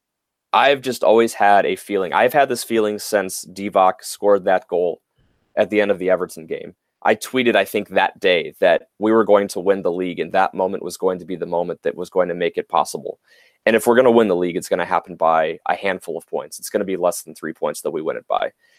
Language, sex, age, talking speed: English, male, 20-39, 260 wpm